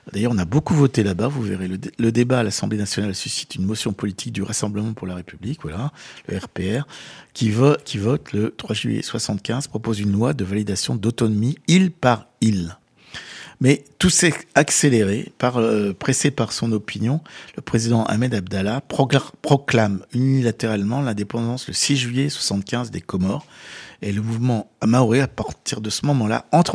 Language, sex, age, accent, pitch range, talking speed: French, male, 50-69, French, 100-135 Hz, 170 wpm